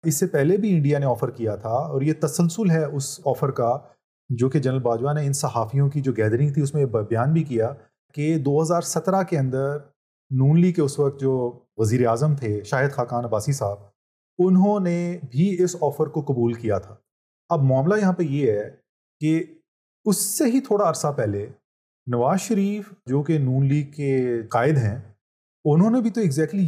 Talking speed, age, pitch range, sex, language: 195 wpm, 30-49, 130-170 Hz, male, Urdu